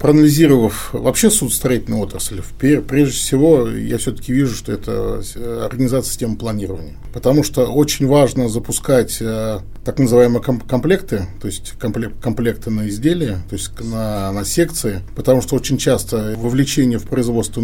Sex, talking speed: male, 135 wpm